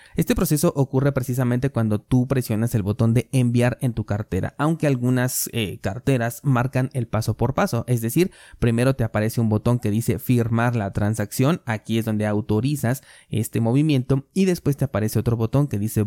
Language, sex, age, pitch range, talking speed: Spanish, male, 20-39, 110-130 Hz, 185 wpm